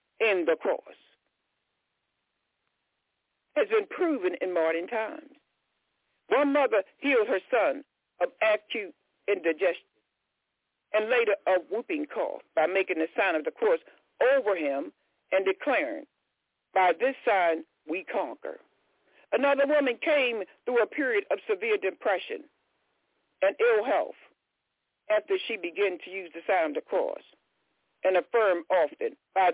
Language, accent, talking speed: English, American, 130 wpm